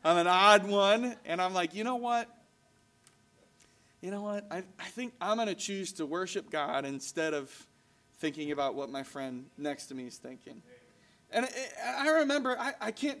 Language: English